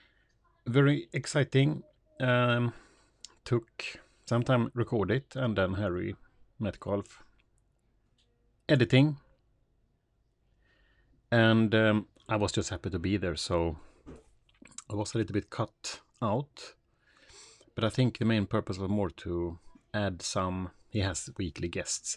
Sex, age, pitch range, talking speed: male, 30-49, 100-130 Hz, 125 wpm